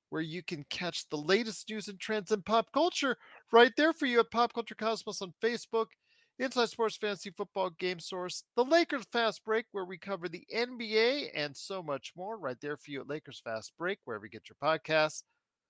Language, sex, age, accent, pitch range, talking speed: English, male, 40-59, American, 170-230 Hz, 205 wpm